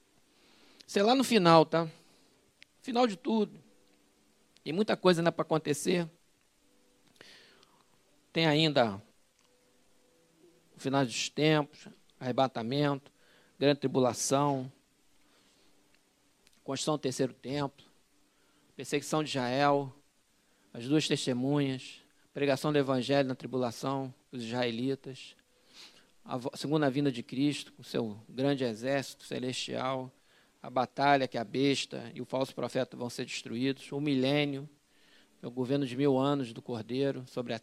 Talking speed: 120 wpm